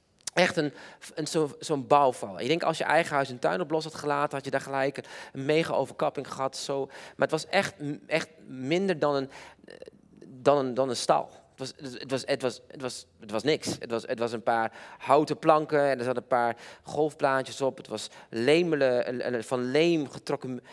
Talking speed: 180 wpm